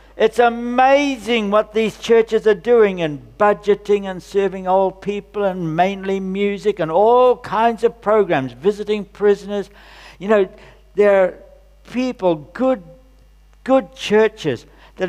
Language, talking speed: English, 125 wpm